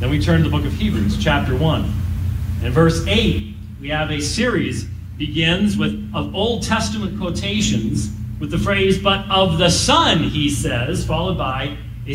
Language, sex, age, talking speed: English, male, 40-59, 170 wpm